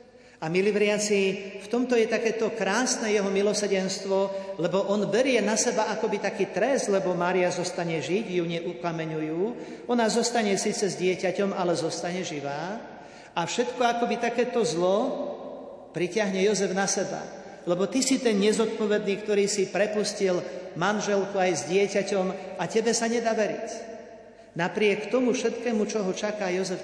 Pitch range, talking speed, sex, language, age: 180-220 Hz, 145 wpm, male, Slovak, 50-69